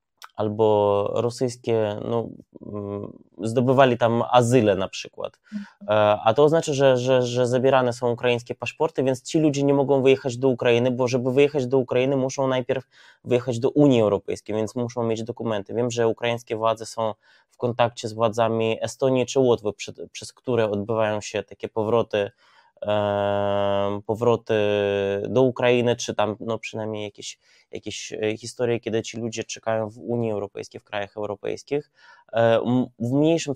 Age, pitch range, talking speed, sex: 20-39, 110-130 Hz, 140 wpm, male